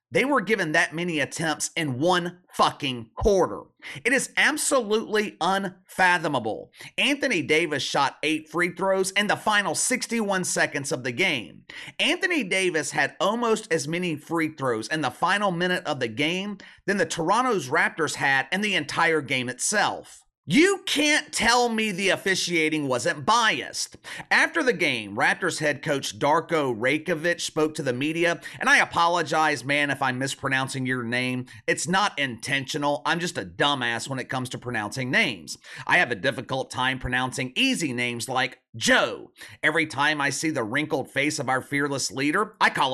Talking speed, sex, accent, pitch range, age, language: 165 wpm, male, American, 130-190 Hz, 30-49, English